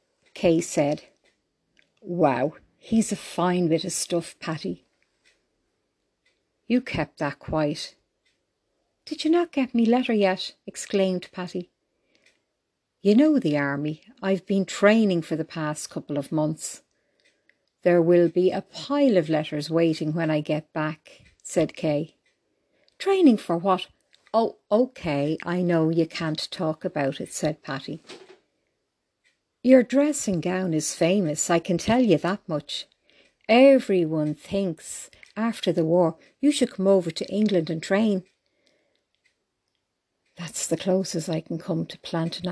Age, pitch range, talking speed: 50-69, 165-205 Hz, 135 wpm